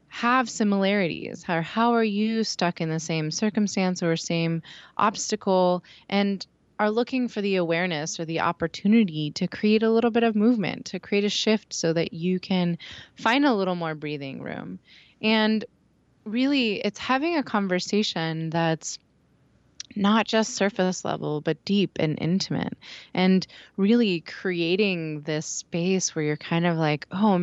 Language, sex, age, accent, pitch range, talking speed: English, female, 20-39, American, 165-220 Hz, 150 wpm